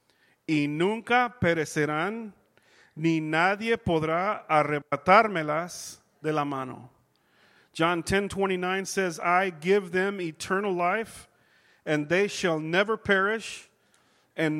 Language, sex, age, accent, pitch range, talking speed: English, male, 40-59, American, 155-200 Hz, 100 wpm